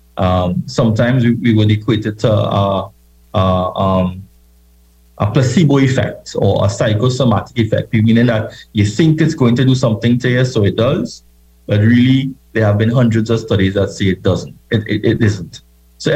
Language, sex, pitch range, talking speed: English, male, 95-120 Hz, 180 wpm